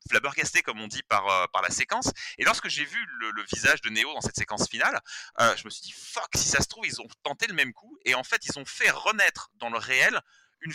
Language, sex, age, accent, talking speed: French, male, 30-49, French, 275 wpm